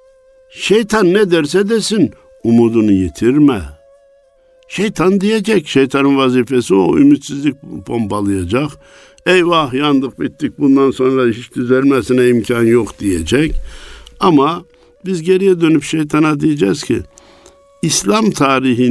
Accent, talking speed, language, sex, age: native, 100 wpm, Turkish, male, 60-79